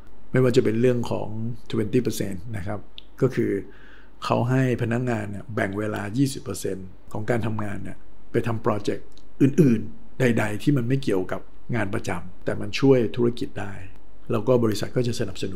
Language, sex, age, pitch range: Thai, male, 60-79, 105-125 Hz